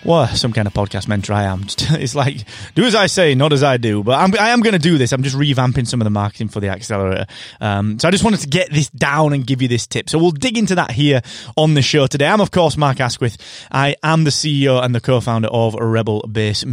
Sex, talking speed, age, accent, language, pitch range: male, 265 wpm, 30-49, British, English, 115-155 Hz